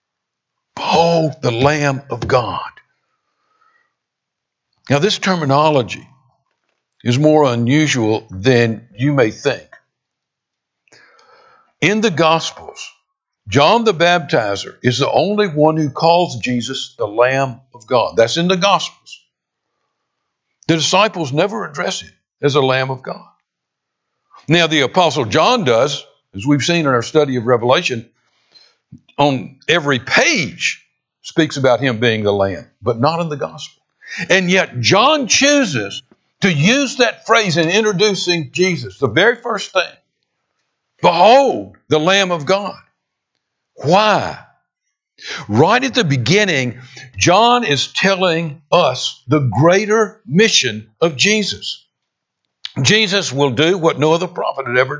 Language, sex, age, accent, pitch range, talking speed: English, male, 60-79, American, 130-195 Hz, 125 wpm